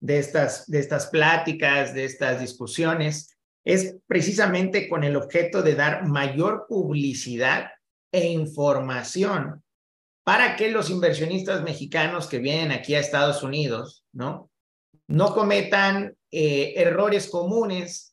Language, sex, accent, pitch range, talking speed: Spanish, male, Mexican, 145-185 Hz, 120 wpm